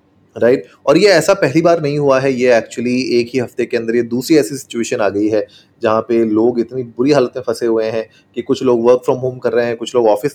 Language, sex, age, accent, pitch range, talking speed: Hindi, male, 30-49, native, 115-140 Hz, 265 wpm